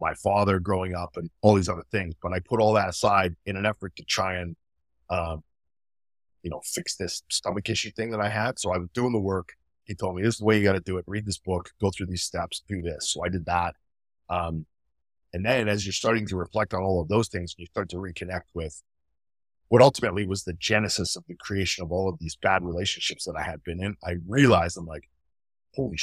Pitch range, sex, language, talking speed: 85-100 Hz, male, English, 240 wpm